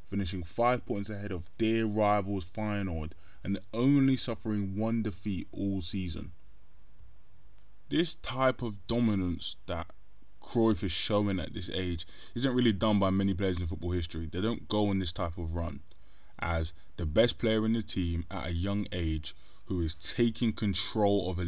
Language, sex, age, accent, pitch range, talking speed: English, male, 20-39, British, 85-110 Hz, 170 wpm